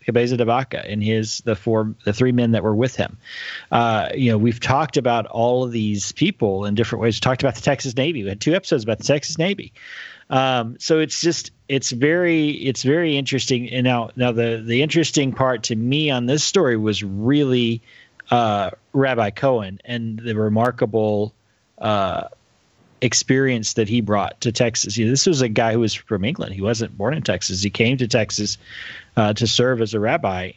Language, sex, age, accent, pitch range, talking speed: English, male, 30-49, American, 110-130 Hz, 200 wpm